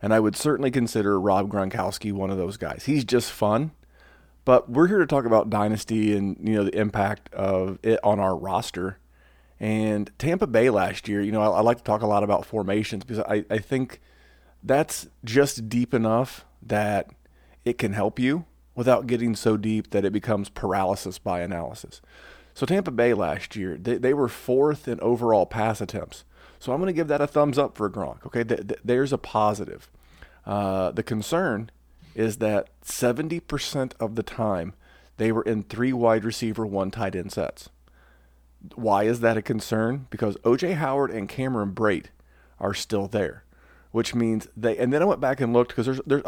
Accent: American